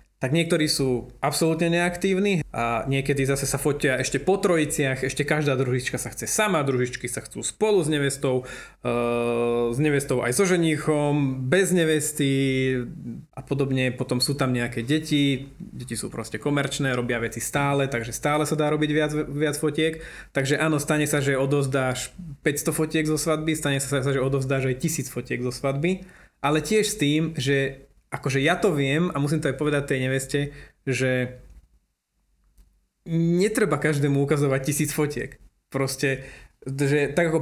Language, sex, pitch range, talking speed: Slovak, male, 130-155 Hz, 160 wpm